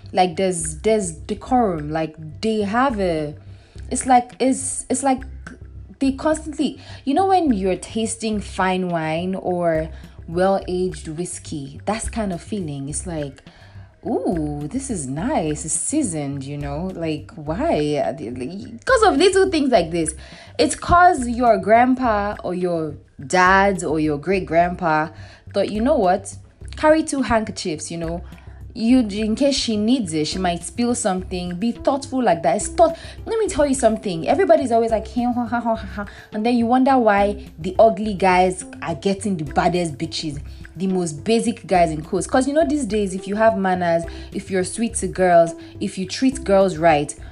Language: English